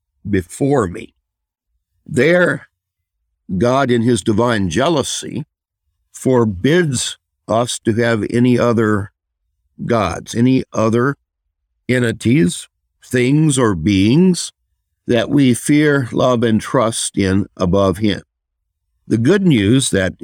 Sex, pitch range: male, 85-125 Hz